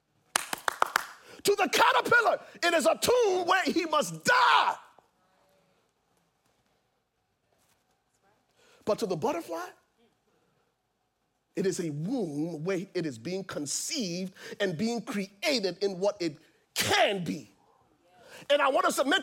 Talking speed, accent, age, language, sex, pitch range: 115 wpm, American, 40-59, English, male, 210-325 Hz